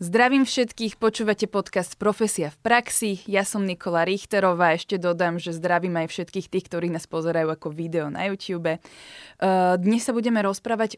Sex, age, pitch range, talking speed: female, 20-39, 170-210 Hz, 160 wpm